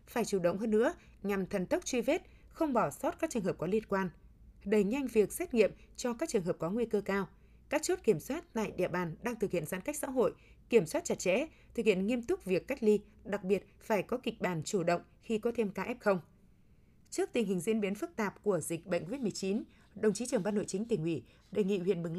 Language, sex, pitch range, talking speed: Vietnamese, female, 185-235 Hz, 255 wpm